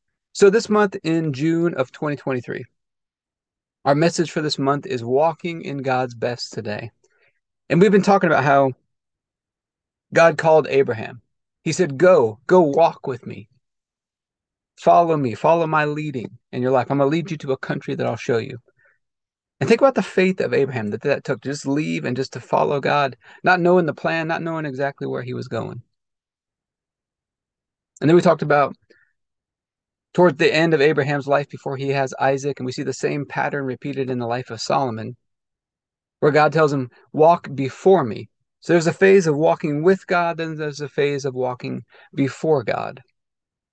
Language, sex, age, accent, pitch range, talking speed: English, male, 30-49, American, 130-165 Hz, 180 wpm